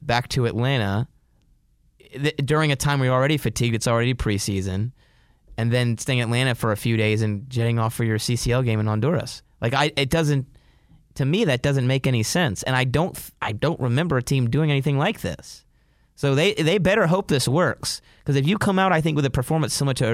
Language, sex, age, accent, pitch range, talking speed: English, male, 30-49, American, 115-145 Hz, 210 wpm